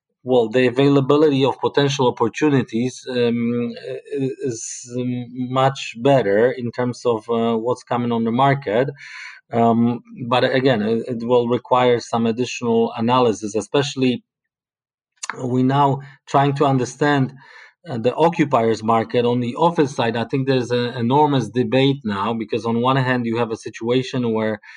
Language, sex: German, male